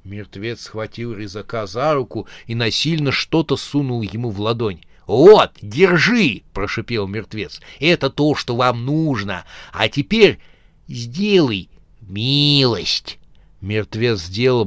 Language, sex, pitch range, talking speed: Russian, male, 100-135 Hz, 125 wpm